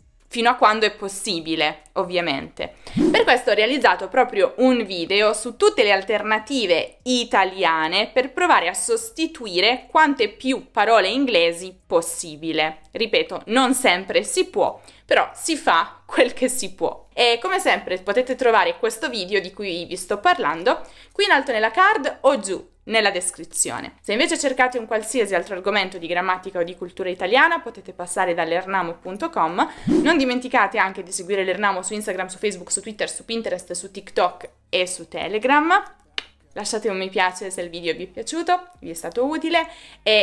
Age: 20-39